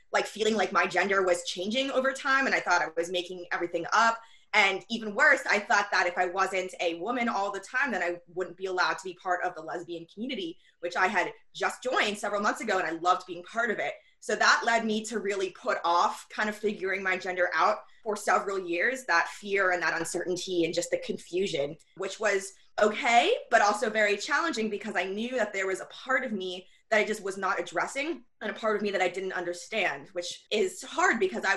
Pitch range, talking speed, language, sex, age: 180-225 Hz, 230 wpm, English, female, 20-39